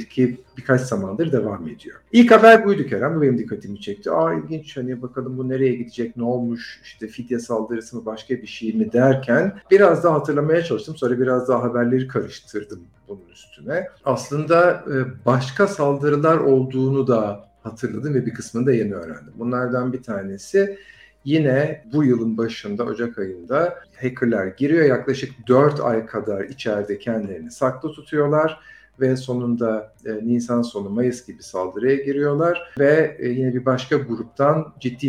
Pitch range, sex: 110-140 Hz, male